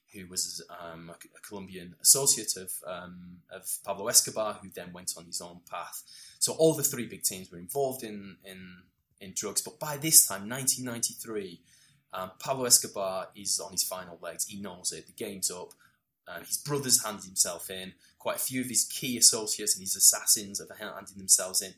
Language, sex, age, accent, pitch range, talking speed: English, male, 20-39, British, 95-130 Hz, 190 wpm